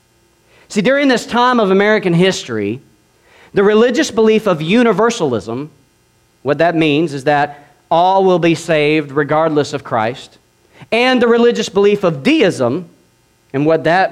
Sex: male